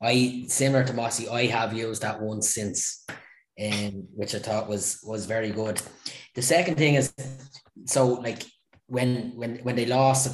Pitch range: 105-120 Hz